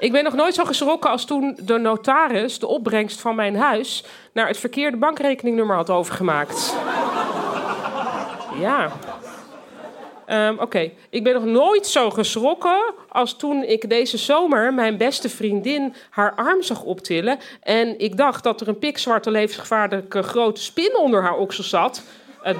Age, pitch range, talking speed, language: 40-59, 210-275 Hz, 155 wpm, Dutch